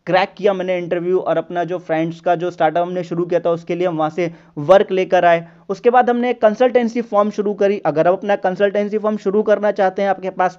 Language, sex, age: Hindi, male, 30-49